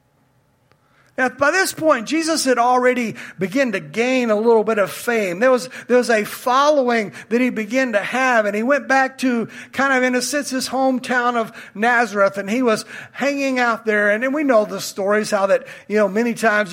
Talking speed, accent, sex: 210 wpm, American, male